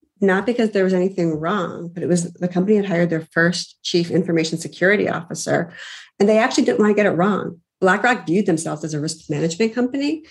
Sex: female